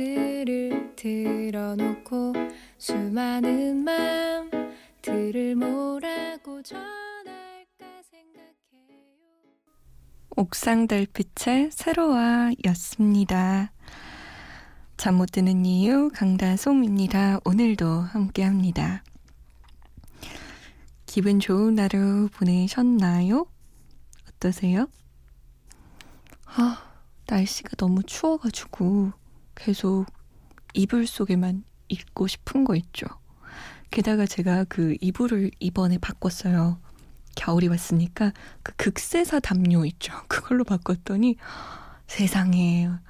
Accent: native